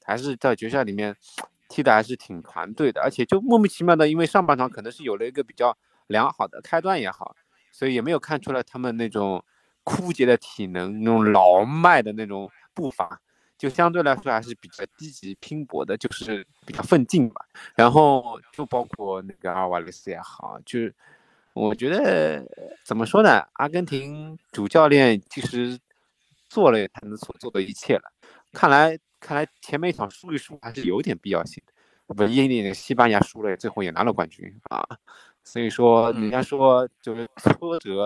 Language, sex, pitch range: Chinese, male, 105-140 Hz